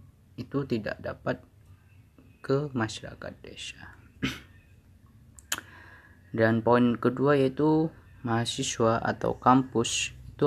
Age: 20-39